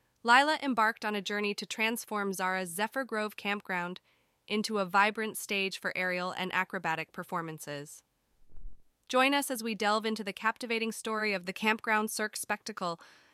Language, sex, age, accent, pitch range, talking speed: English, female, 20-39, American, 180-225 Hz, 155 wpm